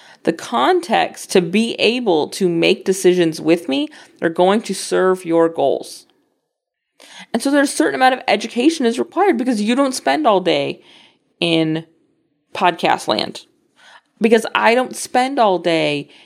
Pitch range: 175-245 Hz